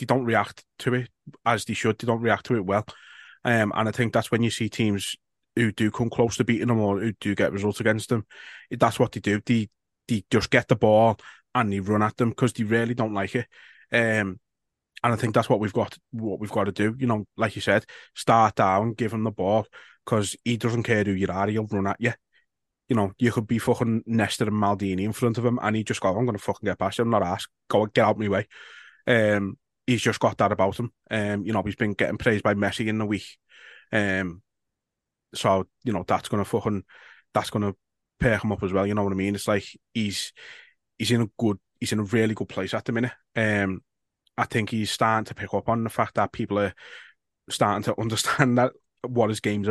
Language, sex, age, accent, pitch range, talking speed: English, male, 20-39, British, 100-115 Hz, 240 wpm